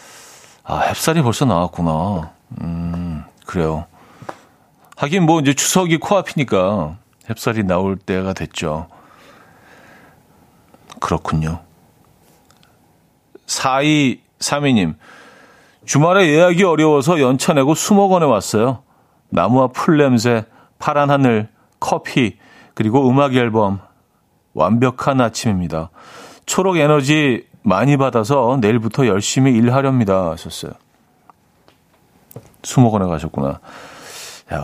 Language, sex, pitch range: Korean, male, 110-150 Hz